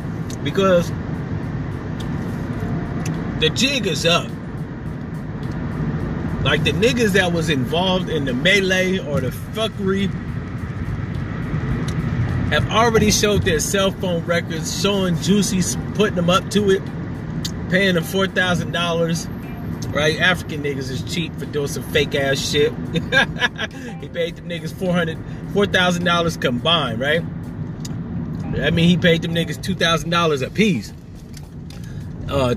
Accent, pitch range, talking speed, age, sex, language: American, 140-180 Hz, 120 wpm, 30-49, male, English